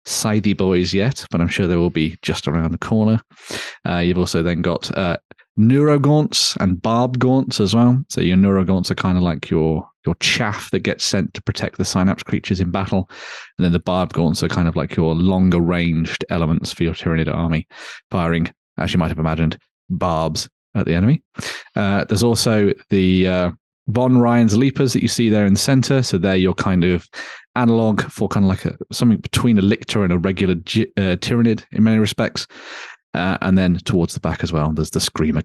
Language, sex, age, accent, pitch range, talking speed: English, male, 30-49, British, 90-115 Hz, 205 wpm